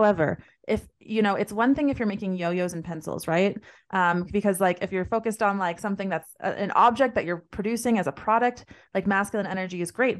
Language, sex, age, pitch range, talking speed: English, female, 20-39, 170-200 Hz, 220 wpm